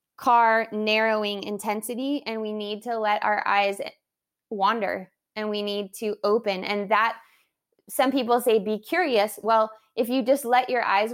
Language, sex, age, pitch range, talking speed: English, female, 20-39, 195-220 Hz, 160 wpm